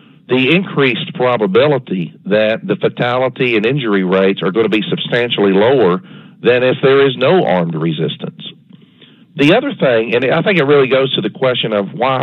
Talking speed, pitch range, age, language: 175 wpm, 110-170 Hz, 50-69, English